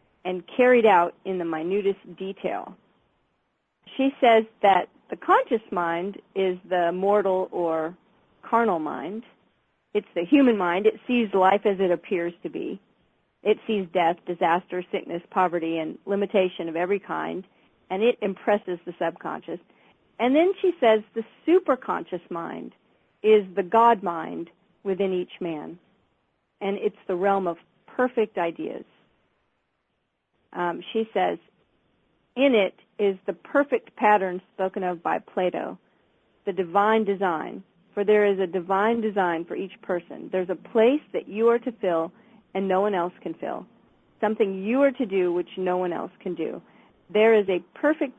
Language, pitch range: English, 180-225 Hz